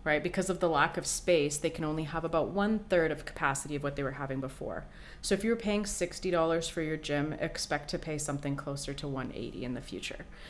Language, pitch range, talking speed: English, 145-175 Hz, 235 wpm